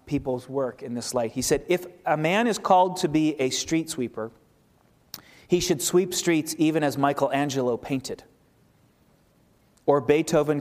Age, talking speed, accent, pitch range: 30-49, 155 wpm, American, 130-165 Hz